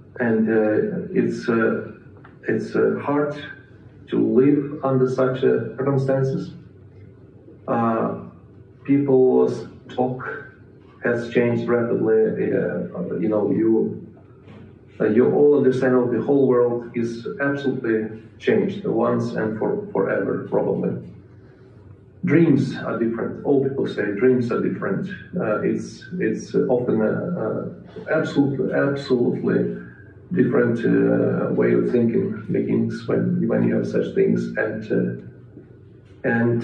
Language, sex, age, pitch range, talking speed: English, male, 40-59, 105-130 Hz, 115 wpm